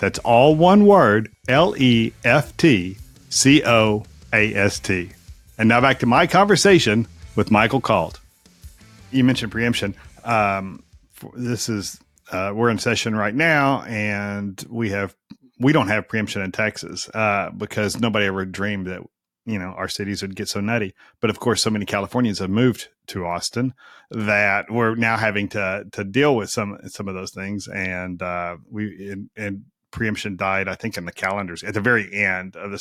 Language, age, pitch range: English, 40-59, 95-115 Hz